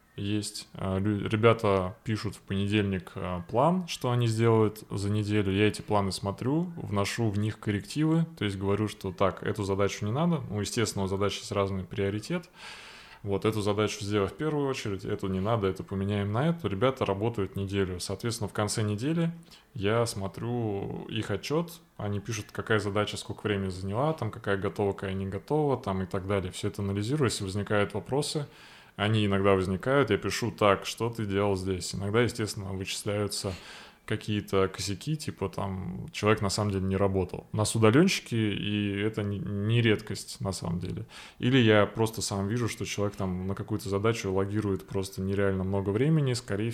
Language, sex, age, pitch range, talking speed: Russian, male, 20-39, 100-115 Hz, 170 wpm